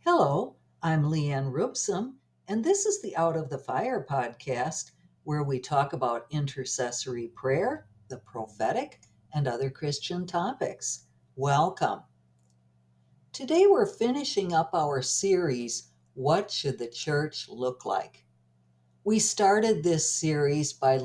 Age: 60-79